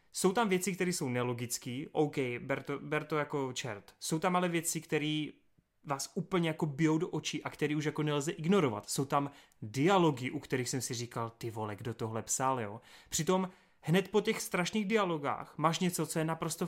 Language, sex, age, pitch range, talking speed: Czech, male, 30-49, 130-165 Hz, 200 wpm